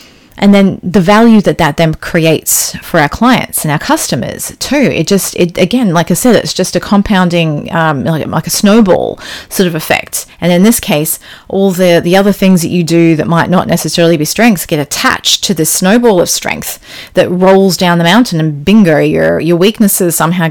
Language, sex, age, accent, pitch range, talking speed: English, female, 30-49, Australian, 160-200 Hz, 205 wpm